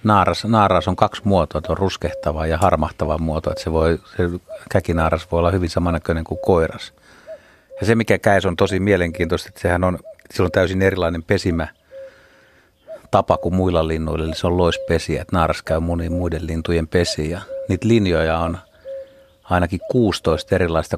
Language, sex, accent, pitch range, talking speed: Finnish, male, native, 80-100 Hz, 170 wpm